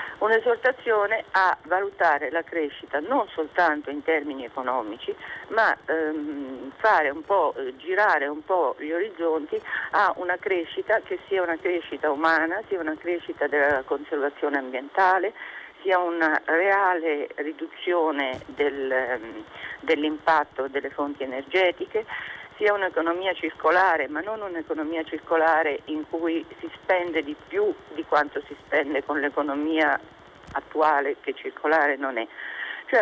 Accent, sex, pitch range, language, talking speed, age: native, female, 150-200 Hz, Italian, 120 wpm, 50-69